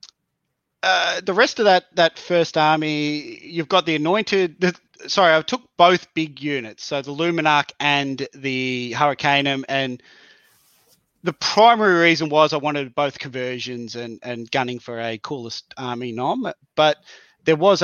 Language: English